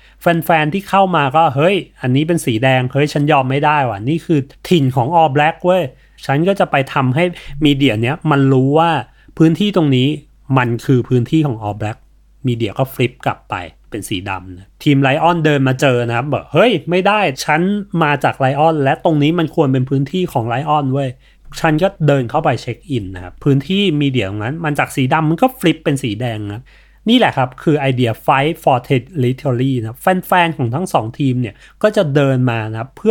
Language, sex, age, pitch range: Thai, male, 30-49, 120-160 Hz